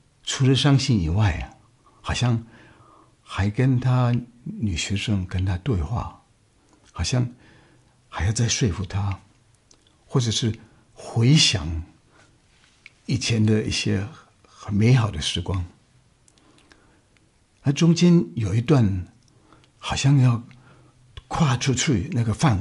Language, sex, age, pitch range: Chinese, male, 60-79, 100-125 Hz